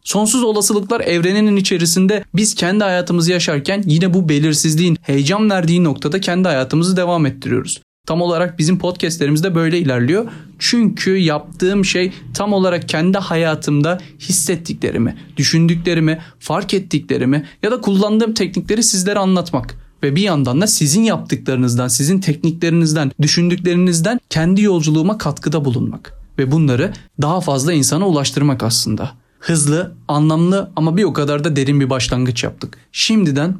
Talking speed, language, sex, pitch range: 130 wpm, Turkish, male, 135-180 Hz